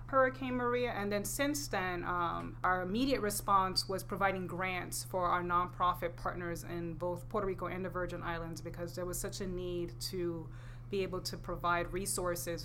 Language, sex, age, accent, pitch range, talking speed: English, female, 20-39, American, 170-195 Hz, 175 wpm